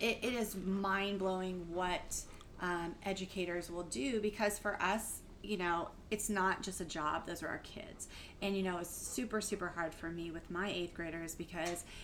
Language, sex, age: English, female, 30-49